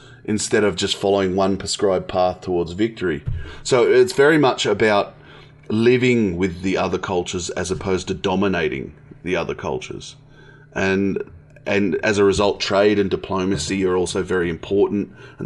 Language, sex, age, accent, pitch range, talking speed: English, male, 30-49, Australian, 95-115 Hz, 150 wpm